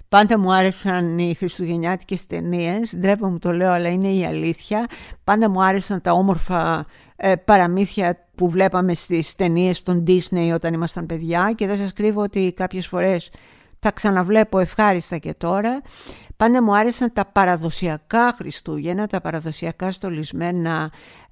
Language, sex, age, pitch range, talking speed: Greek, female, 50-69, 170-215 Hz, 140 wpm